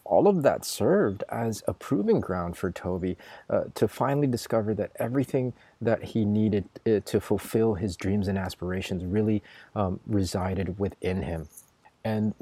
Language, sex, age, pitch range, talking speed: English, male, 30-49, 95-115 Hz, 150 wpm